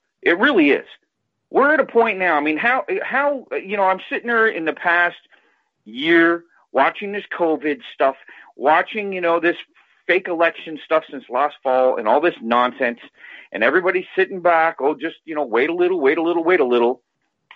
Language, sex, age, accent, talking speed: English, male, 50-69, American, 190 wpm